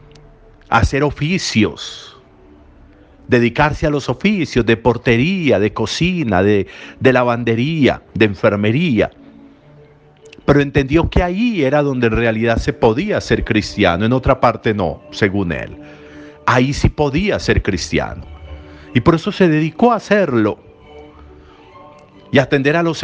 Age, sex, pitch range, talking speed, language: 50-69, male, 105-145 Hz, 130 wpm, Spanish